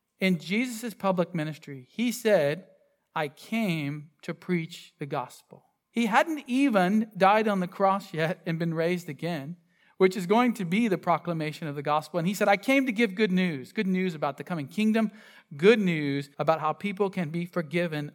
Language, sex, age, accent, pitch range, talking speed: English, male, 40-59, American, 160-210 Hz, 190 wpm